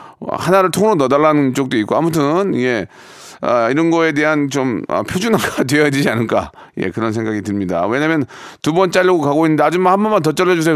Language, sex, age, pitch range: Korean, male, 40-59, 135-185 Hz